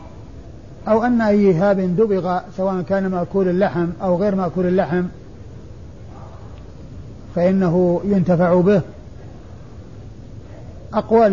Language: Arabic